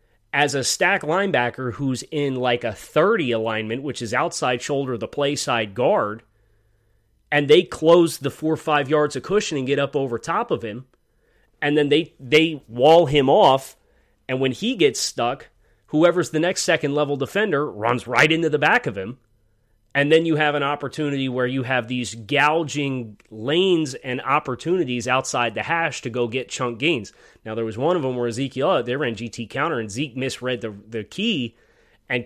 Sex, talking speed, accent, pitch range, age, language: male, 190 wpm, American, 115-150 Hz, 30-49, English